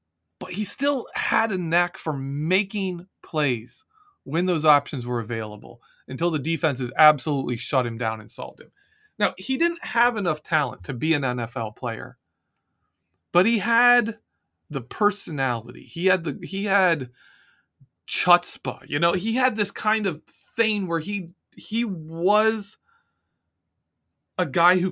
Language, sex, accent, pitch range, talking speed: English, male, American, 130-210 Hz, 145 wpm